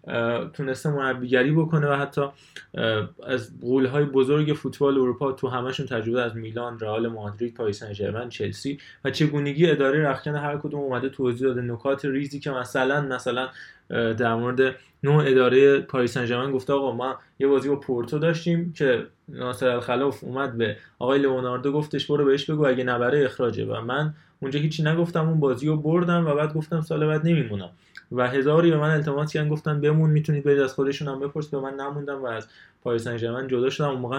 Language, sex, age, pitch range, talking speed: Persian, male, 20-39, 125-150 Hz, 175 wpm